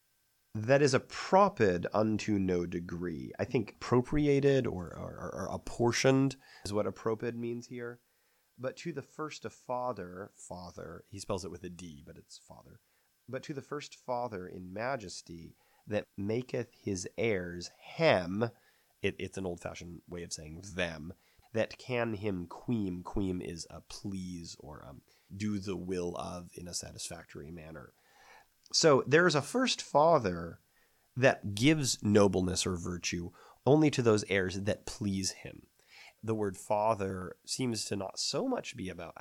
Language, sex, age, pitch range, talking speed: English, male, 30-49, 90-125 Hz, 155 wpm